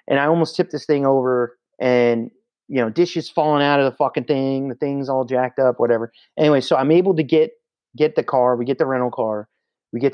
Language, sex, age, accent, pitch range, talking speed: English, male, 30-49, American, 115-150 Hz, 230 wpm